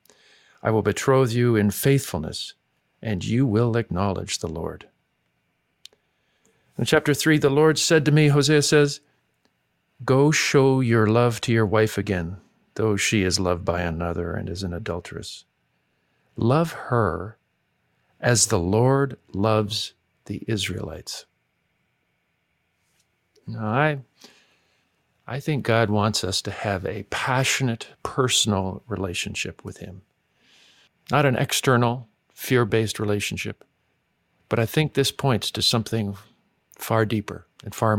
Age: 50-69